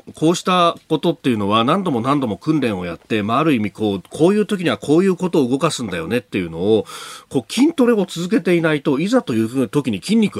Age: 40-59